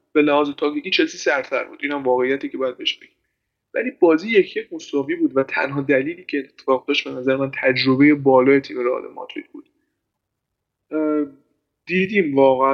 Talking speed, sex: 165 wpm, male